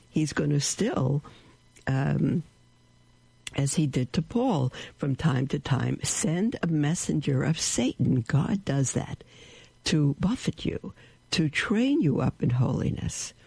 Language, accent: English, American